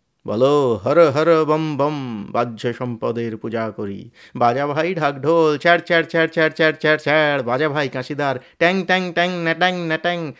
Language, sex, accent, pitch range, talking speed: Bengali, male, native, 130-175 Hz, 110 wpm